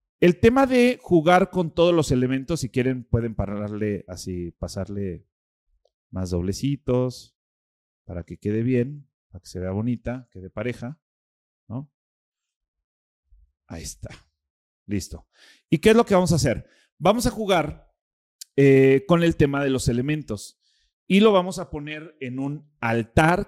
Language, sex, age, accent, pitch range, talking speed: Spanish, male, 40-59, Mexican, 110-160 Hz, 150 wpm